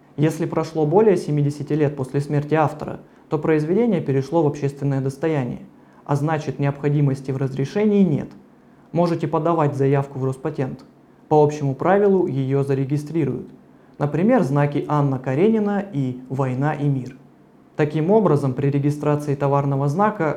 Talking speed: 130 wpm